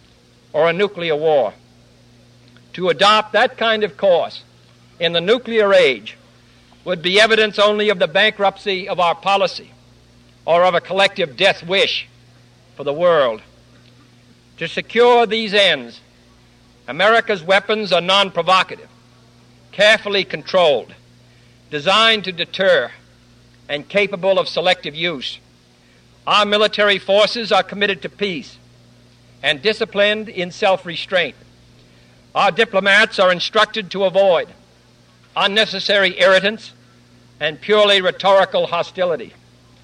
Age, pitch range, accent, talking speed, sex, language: 60-79, 120-195 Hz, American, 110 wpm, male, English